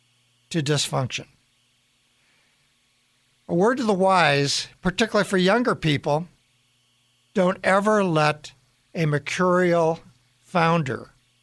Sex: male